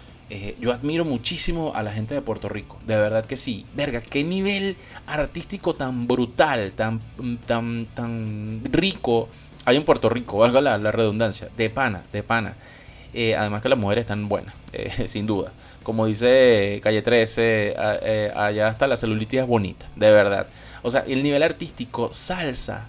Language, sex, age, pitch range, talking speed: Spanish, male, 20-39, 110-145 Hz, 170 wpm